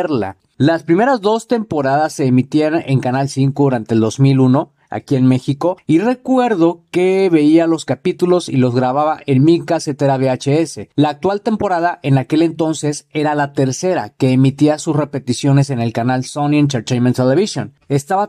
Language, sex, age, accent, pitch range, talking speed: Spanish, male, 40-59, Mexican, 130-170 Hz, 160 wpm